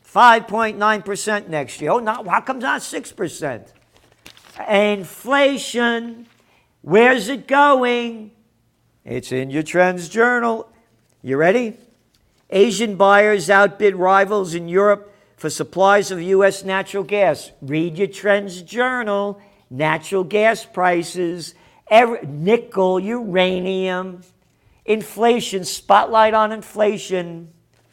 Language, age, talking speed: English, 50-69, 105 wpm